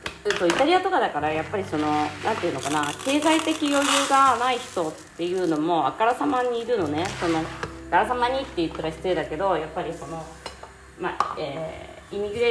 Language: Japanese